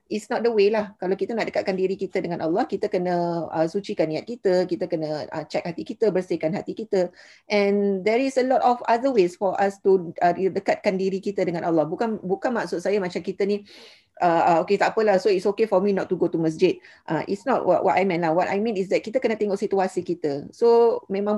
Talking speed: 240 wpm